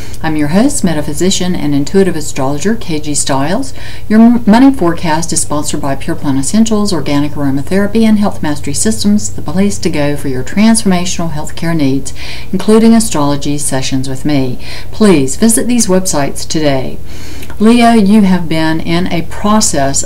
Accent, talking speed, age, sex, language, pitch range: American, 155 wpm, 60-79, female, English, 145-185 Hz